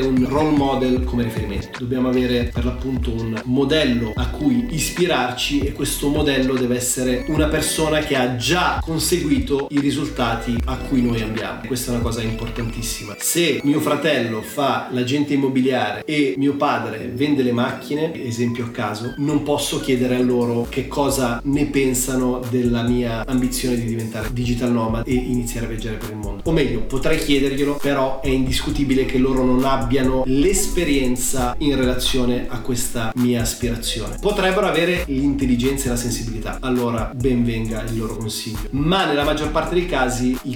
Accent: native